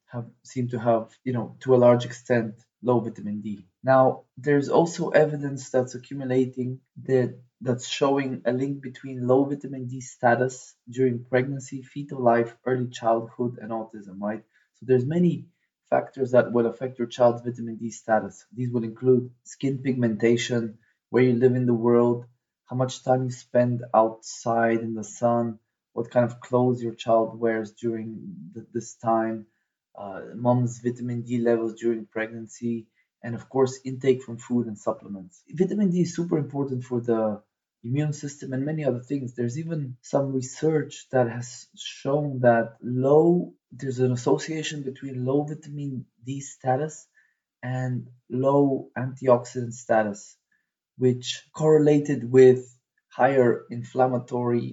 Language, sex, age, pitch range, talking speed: English, male, 20-39, 115-130 Hz, 145 wpm